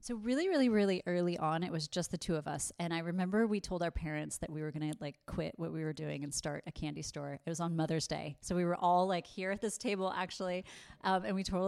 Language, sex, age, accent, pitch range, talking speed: English, female, 30-49, American, 160-195 Hz, 285 wpm